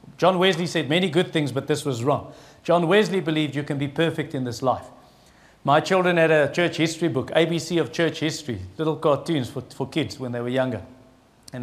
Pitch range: 135-165 Hz